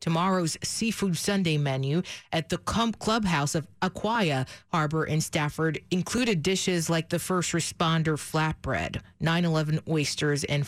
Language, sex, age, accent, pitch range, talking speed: English, female, 30-49, American, 155-190 Hz, 130 wpm